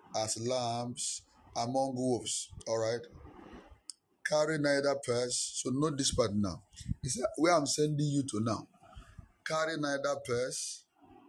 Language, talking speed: English, 130 wpm